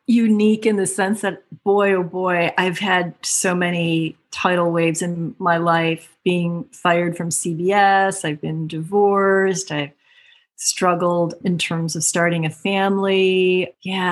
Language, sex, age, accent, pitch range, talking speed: English, female, 40-59, American, 165-195 Hz, 140 wpm